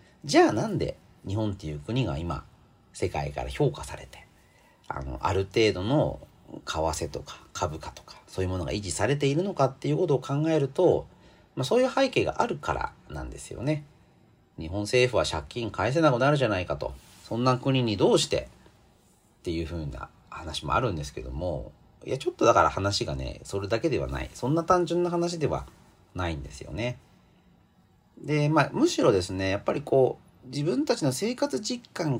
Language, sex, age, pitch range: Japanese, male, 40-59, 85-140 Hz